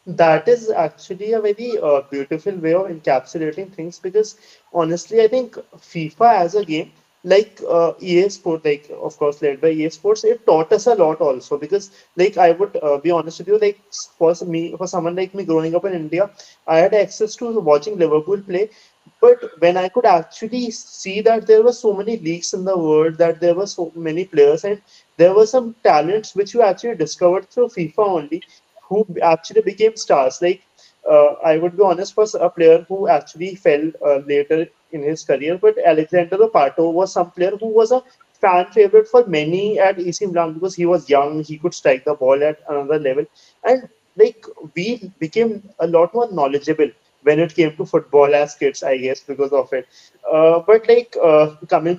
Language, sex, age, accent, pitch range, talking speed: English, male, 30-49, Indian, 160-230 Hz, 195 wpm